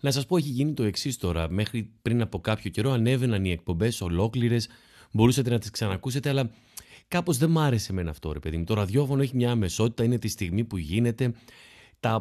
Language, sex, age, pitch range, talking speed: Greek, male, 30-49, 100-140 Hz, 205 wpm